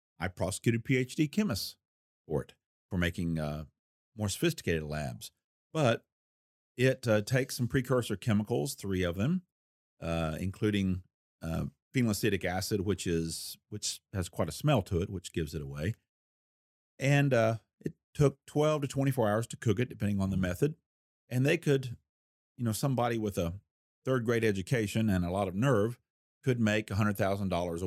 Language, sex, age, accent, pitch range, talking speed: English, male, 40-59, American, 85-120 Hz, 155 wpm